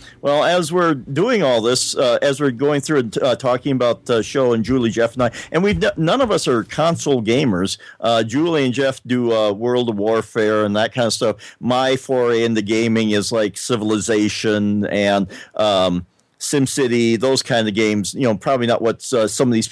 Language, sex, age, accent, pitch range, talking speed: English, male, 50-69, American, 110-140 Hz, 200 wpm